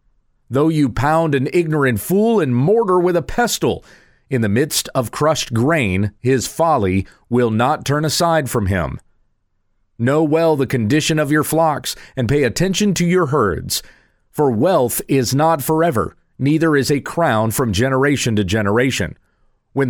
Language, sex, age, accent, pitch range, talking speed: English, male, 40-59, American, 115-160 Hz, 155 wpm